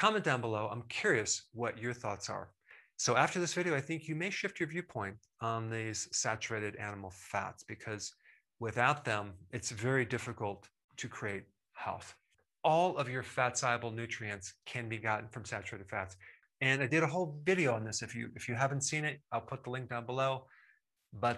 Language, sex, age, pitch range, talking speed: English, male, 30-49, 110-135 Hz, 190 wpm